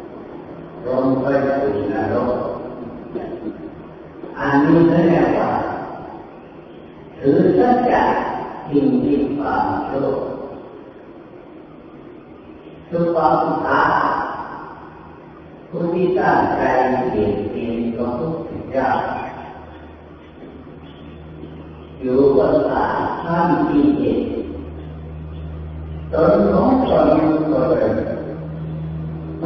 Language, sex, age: Thai, female, 40-59